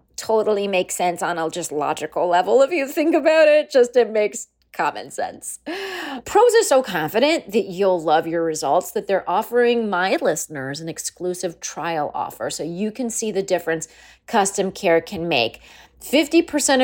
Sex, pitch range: female, 175-265 Hz